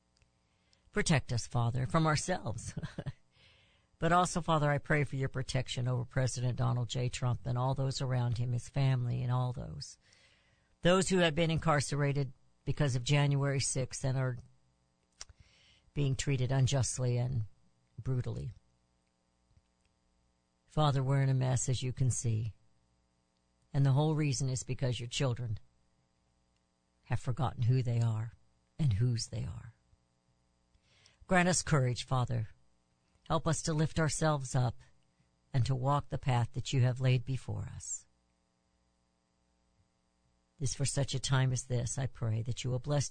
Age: 60-79